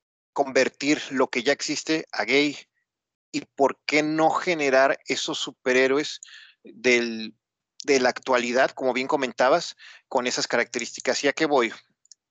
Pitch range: 125-150 Hz